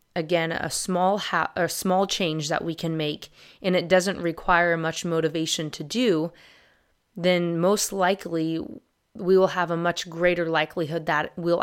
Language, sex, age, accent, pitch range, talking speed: English, female, 20-39, American, 160-180 Hz, 160 wpm